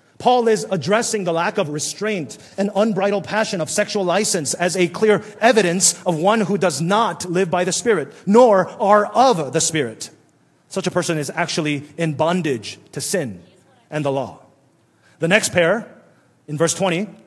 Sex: male